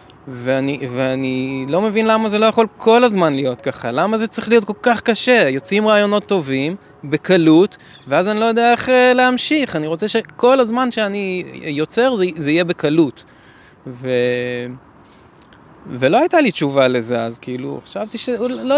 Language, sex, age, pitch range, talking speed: Hebrew, male, 20-39, 140-210 Hz, 160 wpm